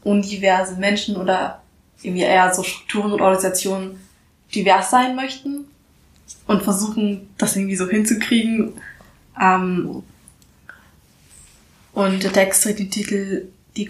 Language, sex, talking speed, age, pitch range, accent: German, female, 115 wpm, 20-39, 190-220 Hz, German